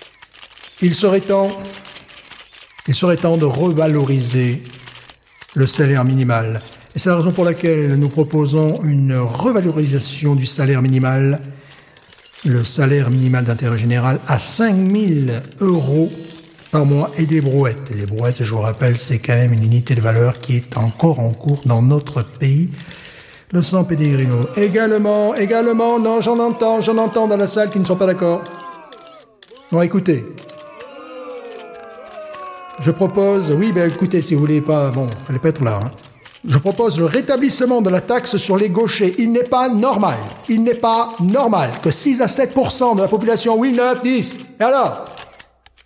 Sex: male